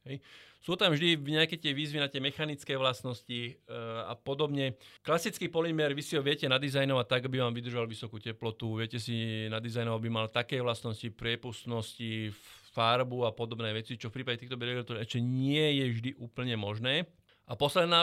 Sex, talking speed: male, 175 wpm